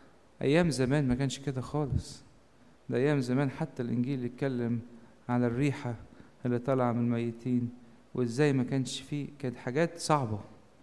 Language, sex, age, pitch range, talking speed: English, male, 50-69, 120-150 Hz, 145 wpm